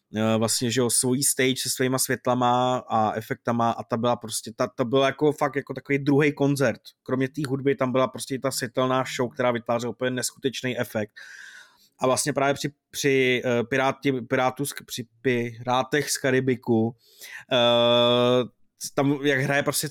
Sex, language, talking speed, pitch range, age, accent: male, Czech, 160 wpm, 115-135 Hz, 20-39, native